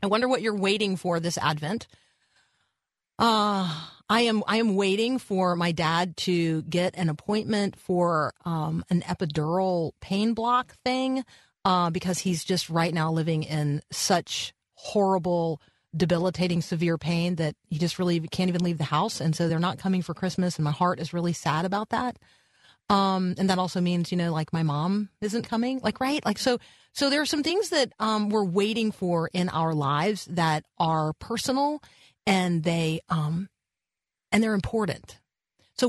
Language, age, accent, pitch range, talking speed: English, 30-49, American, 160-205 Hz, 170 wpm